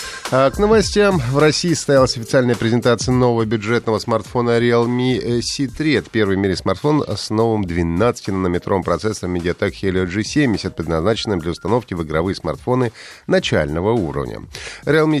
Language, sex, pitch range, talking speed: Russian, male, 90-125 Hz, 130 wpm